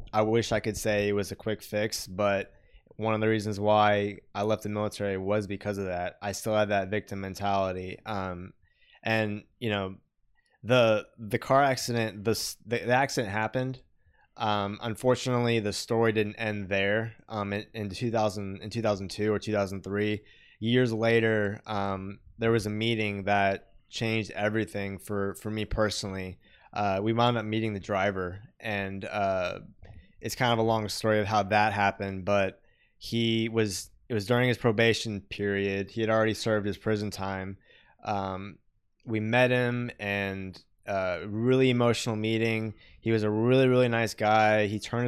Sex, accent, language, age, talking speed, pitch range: male, American, English, 20-39, 165 wpm, 100-115 Hz